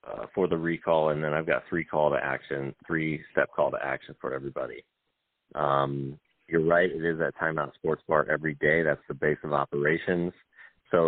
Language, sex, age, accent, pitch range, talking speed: English, male, 30-49, American, 75-85 Hz, 195 wpm